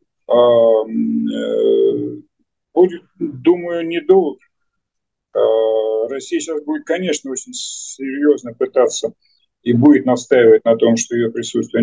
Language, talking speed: Russian, 90 wpm